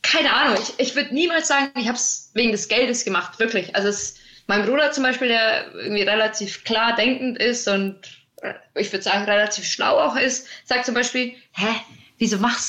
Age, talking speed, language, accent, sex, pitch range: 20-39, 195 wpm, German, German, female, 200-240 Hz